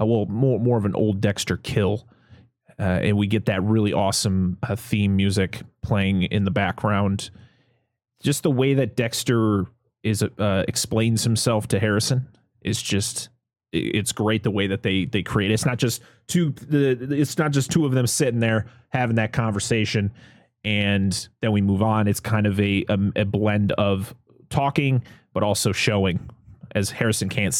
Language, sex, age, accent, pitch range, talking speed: English, male, 30-49, American, 105-125 Hz, 170 wpm